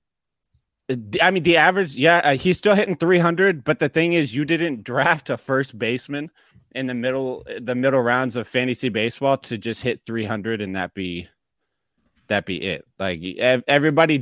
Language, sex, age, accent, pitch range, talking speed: English, male, 30-49, American, 110-140 Hz, 170 wpm